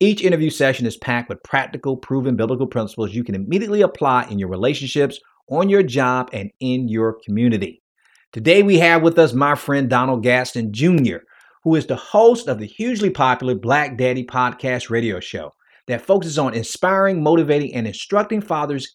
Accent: American